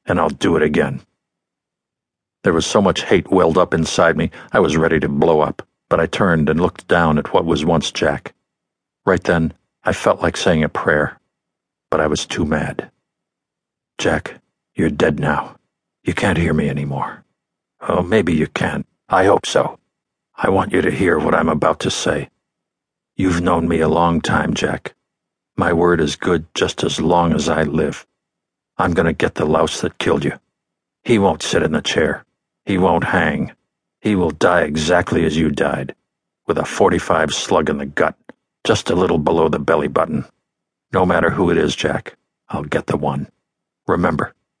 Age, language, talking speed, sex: 60-79, English, 185 wpm, male